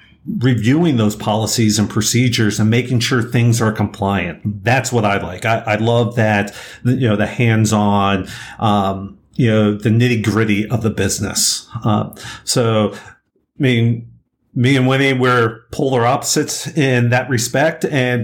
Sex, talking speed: male, 140 wpm